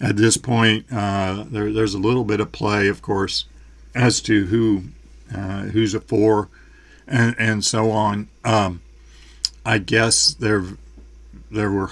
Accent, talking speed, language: American, 150 wpm, English